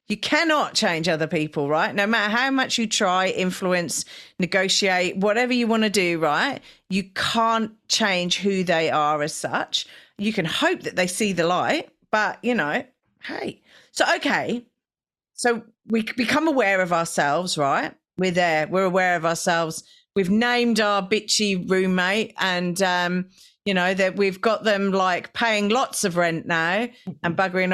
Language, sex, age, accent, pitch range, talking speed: English, female, 40-59, British, 180-240 Hz, 165 wpm